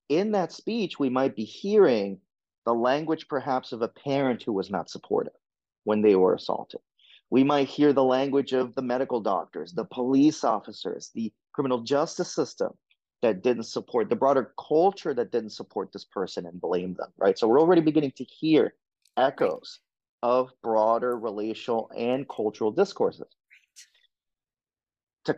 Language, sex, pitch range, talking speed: English, male, 120-160 Hz, 155 wpm